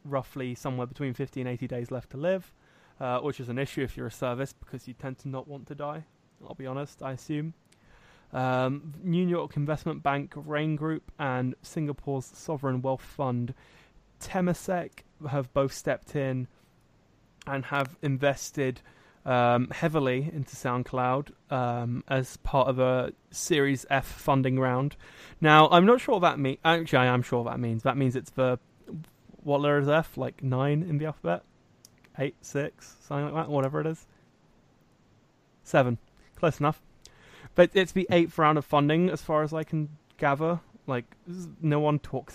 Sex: male